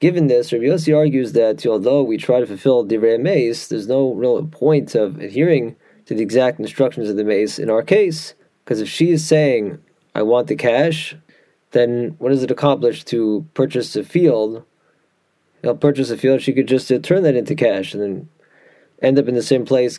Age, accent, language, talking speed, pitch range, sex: 20-39, American, English, 210 wpm, 115-145 Hz, male